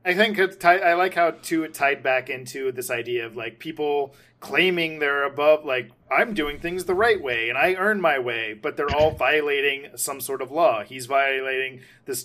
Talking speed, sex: 195 wpm, male